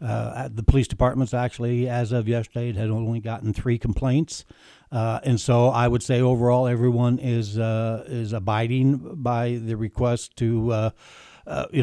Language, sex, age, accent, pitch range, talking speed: English, male, 60-79, American, 115-130 Hz, 165 wpm